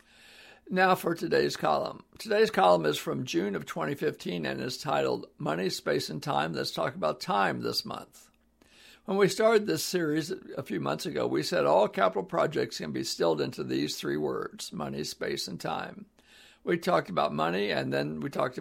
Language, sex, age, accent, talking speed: English, male, 60-79, American, 185 wpm